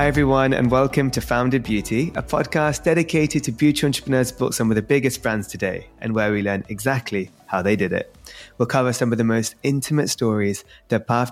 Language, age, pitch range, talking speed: English, 20-39, 110-150 Hz, 205 wpm